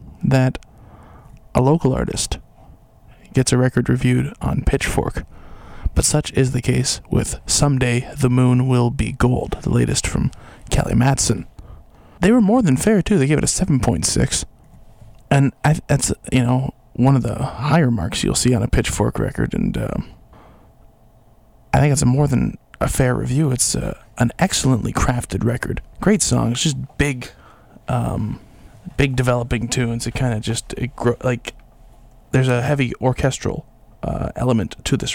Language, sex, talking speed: English, male, 160 wpm